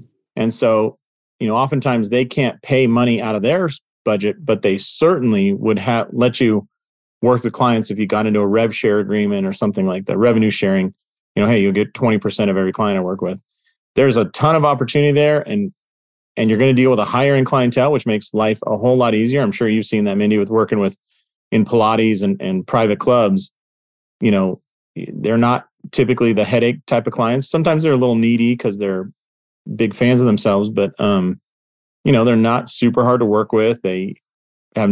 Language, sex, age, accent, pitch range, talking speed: English, male, 30-49, American, 105-125 Hz, 210 wpm